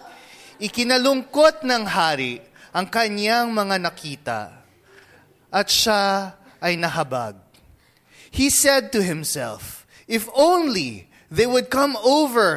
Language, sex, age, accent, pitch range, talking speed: English, male, 20-39, Filipino, 150-230 Hz, 100 wpm